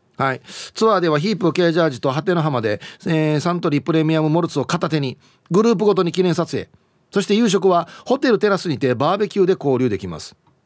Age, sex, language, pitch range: 40-59, male, Japanese, 125-210 Hz